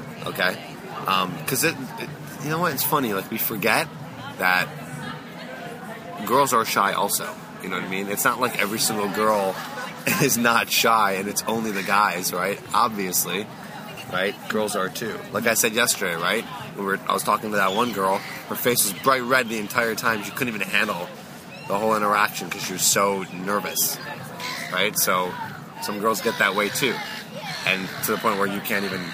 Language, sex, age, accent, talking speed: English, male, 20-39, American, 195 wpm